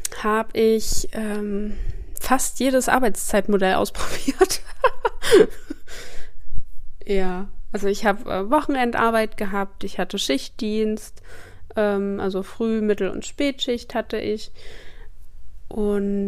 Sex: female